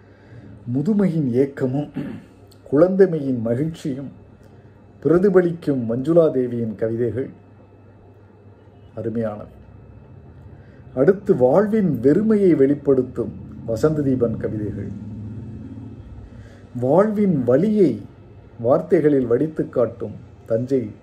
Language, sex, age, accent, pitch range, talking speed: Tamil, male, 50-69, native, 100-145 Hz, 55 wpm